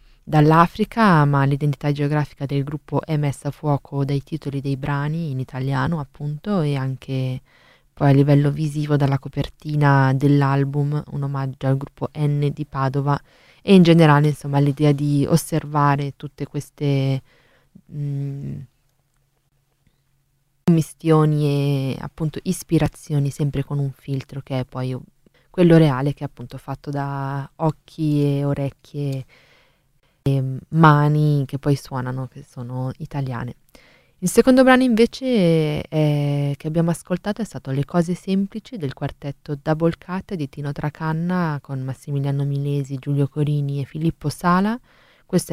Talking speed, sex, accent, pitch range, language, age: 130 wpm, female, native, 140-165 Hz, Italian, 20-39